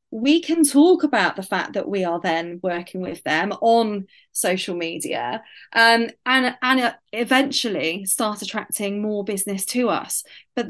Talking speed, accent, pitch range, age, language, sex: 150 wpm, British, 200-255 Hz, 30-49, English, female